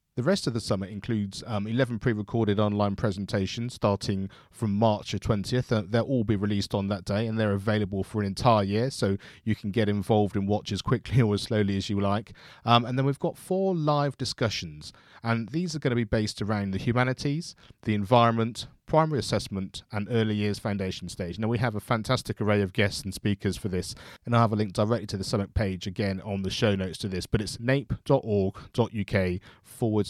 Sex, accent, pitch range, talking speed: male, British, 100-120 Hz, 205 wpm